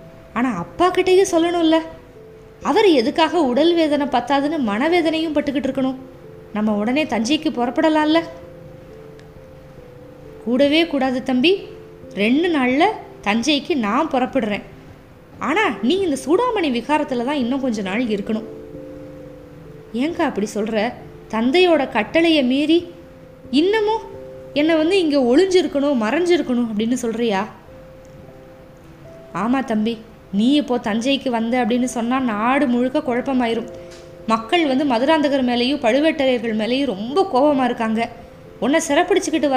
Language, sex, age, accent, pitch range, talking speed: Tamil, female, 20-39, native, 220-305 Hz, 105 wpm